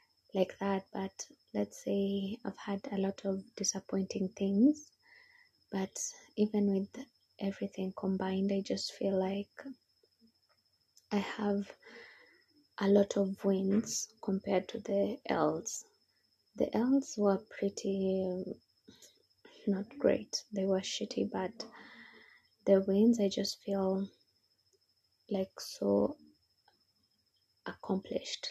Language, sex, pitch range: English, female, 195-220 Hz